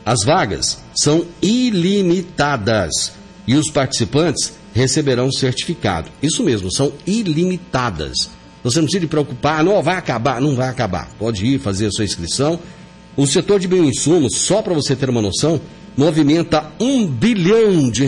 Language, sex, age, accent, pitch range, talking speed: Portuguese, male, 60-79, Brazilian, 110-150 Hz, 150 wpm